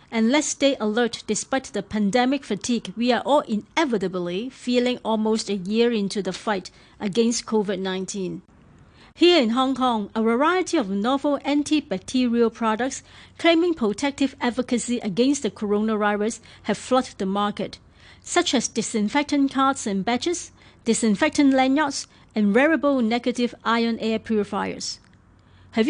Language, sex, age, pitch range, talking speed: English, female, 40-59, 210-260 Hz, 130 wpm